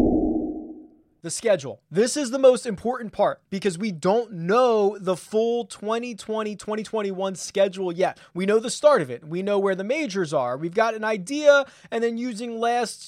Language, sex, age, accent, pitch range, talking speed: English, male, 20-39, American, 190-240 Hz, 170 wpm